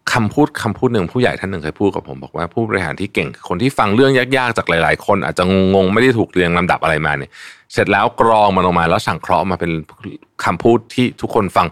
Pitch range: 80-110 Hz